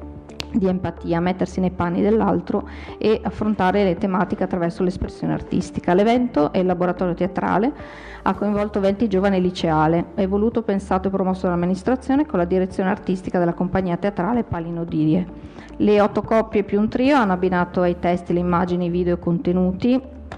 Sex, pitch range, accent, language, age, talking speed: female, 175-205 Hz, native, Italian, 40-59, 160 wpm